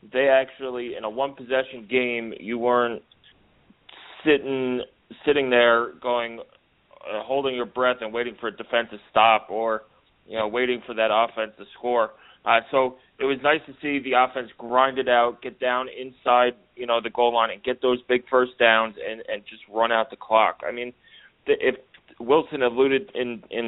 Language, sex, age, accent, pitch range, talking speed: English, male, 30-49, American, 115-130 Hz, 185 wpm